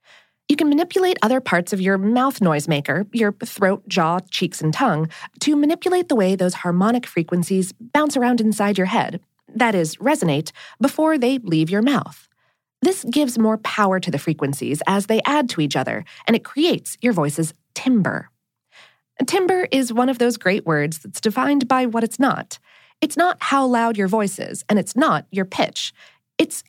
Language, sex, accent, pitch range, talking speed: English, female, American, 180-270 Hz, 175 wpm